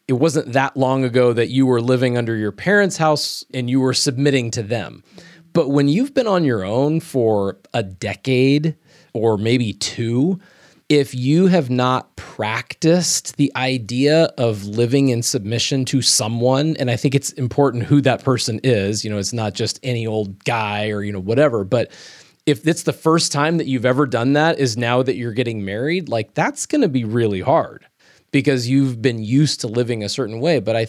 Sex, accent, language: male, American, English